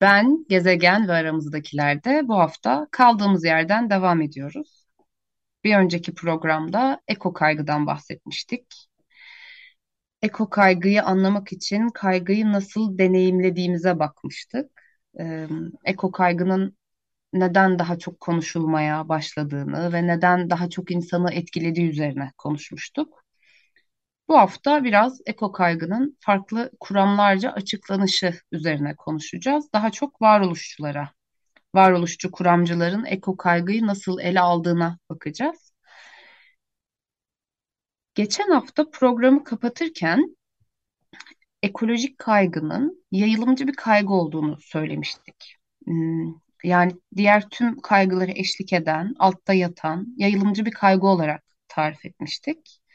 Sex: female